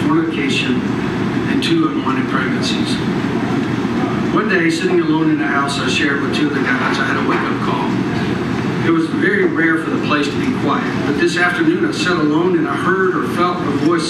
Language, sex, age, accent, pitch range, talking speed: English, male, 50-69, American, 160-230 Hz, 195 wpm